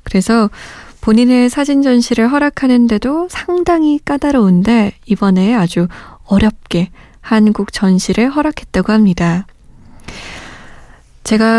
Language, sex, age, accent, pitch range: Korean, female, 20-39, native, 190-250 Hz